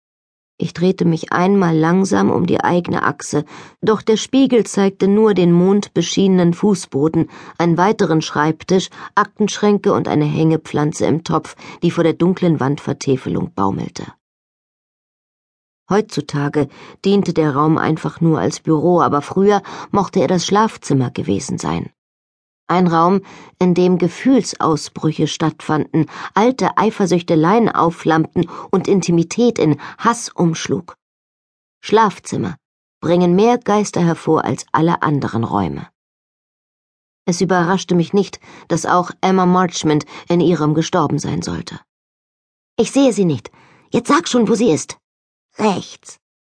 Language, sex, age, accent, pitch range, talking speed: German, female, 40-59, German, 160-210 Hz, 125 wpm